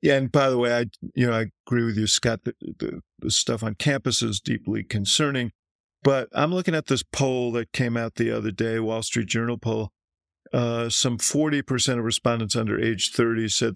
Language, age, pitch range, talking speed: English, 50-69, 105-120 Hz, 200 wpm